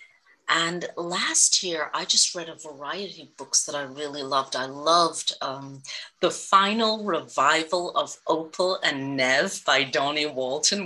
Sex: female